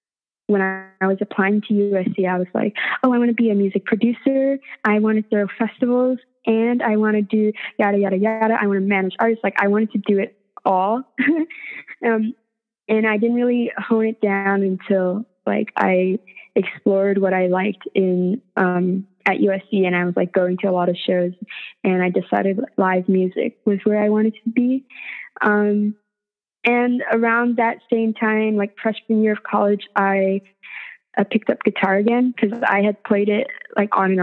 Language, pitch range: English, 195-225 Hz